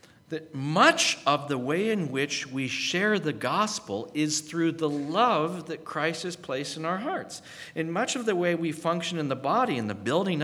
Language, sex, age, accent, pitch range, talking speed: English, male, 50-69, American, 110-165 Hz, 200 wpm